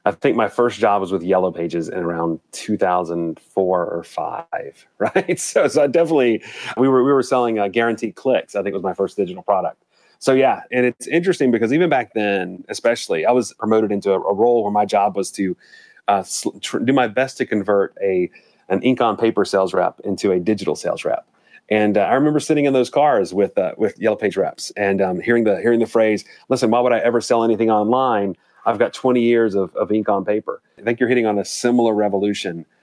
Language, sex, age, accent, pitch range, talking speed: English, male, 30-49, American, 100-120 Hz, 225 wpm